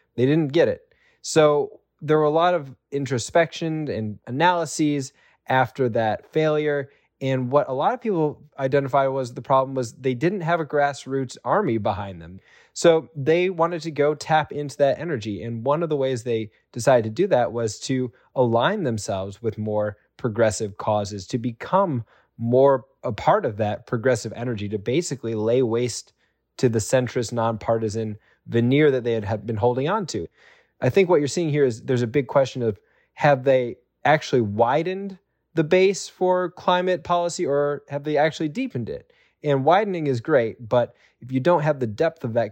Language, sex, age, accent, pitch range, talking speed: English, male, 20-39, American, 115-155 Hz, 180 wpm